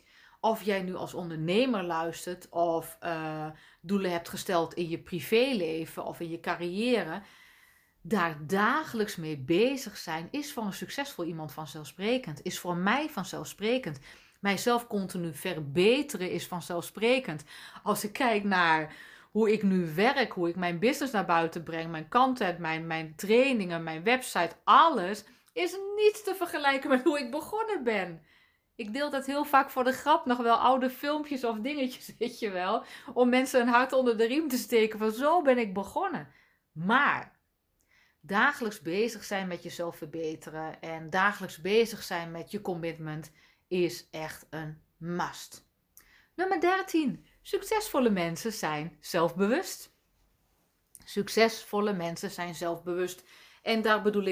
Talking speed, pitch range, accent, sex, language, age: 145 wpm, 170-245 Hz, Dutch, female, Dutch, 30-49